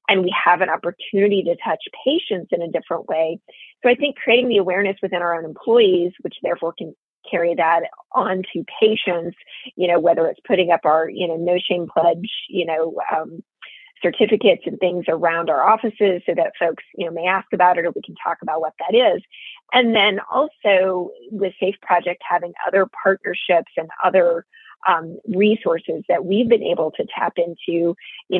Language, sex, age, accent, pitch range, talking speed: English, female, 30-49, American, 175-210 Hz, 185 wpm